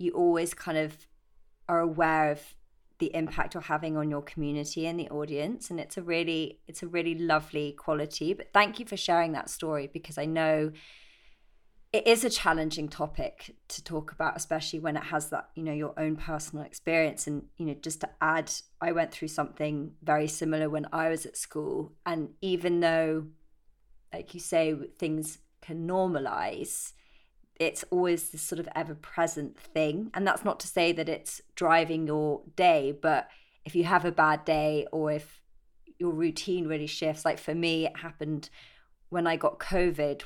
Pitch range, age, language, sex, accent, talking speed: 150-170 Hz, 30-49, English, female, British, 180 wpm